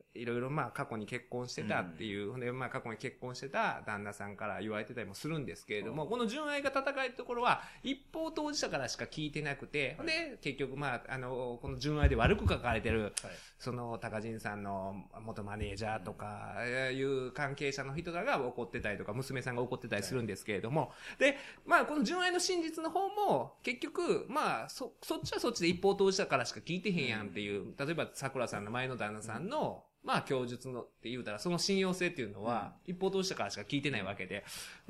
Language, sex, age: Japanese, male, 20-39